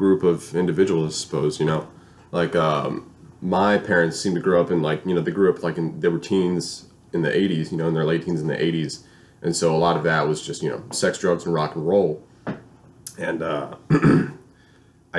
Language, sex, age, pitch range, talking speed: English, male, 20-39, 80-100 Hz, 225 wpm